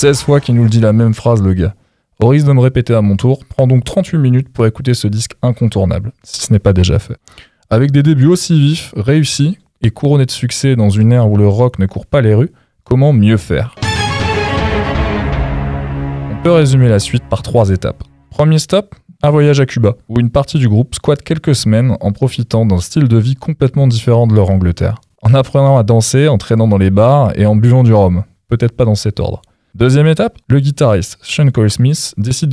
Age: 20-39